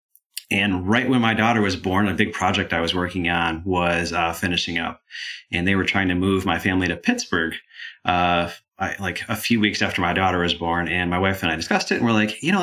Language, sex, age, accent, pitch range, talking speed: English, male, 30-49, American, 90-105 Hz, 240 wpm